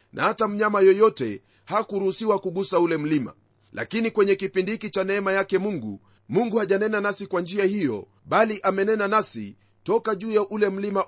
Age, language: 30-49, Swahili